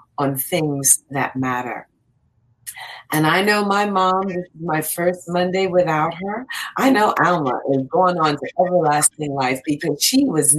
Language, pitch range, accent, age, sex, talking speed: English, 155-210 Hz, American, 40-59, female, 160 wpm